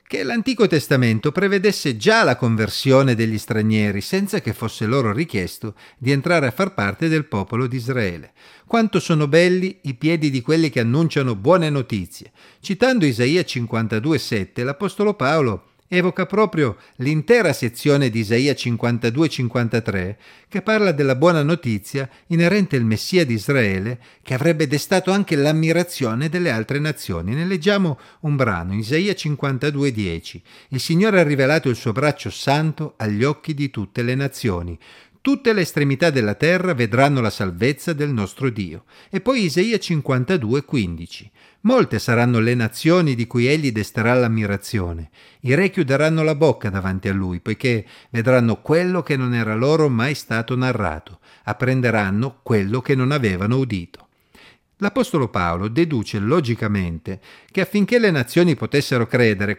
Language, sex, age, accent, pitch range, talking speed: Italian, male, 50-69, native, 110-165 Hz, 145 wpm